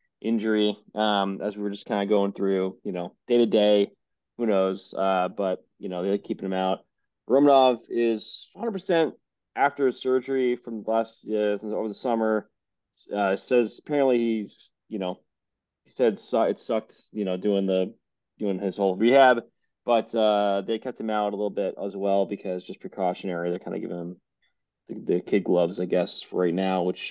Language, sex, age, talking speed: English, male, 20-39, 185 wpm